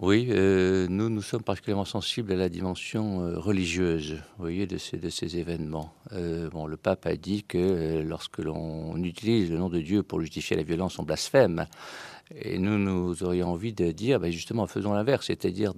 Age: 50-69